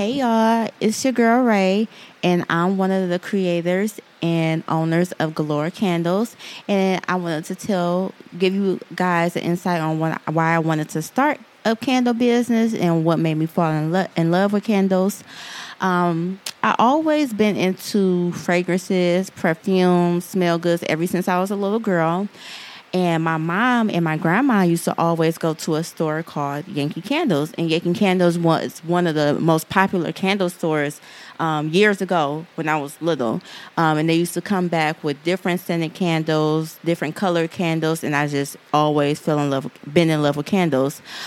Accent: American